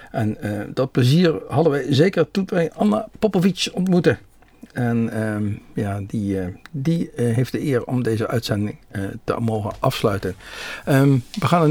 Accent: Dutch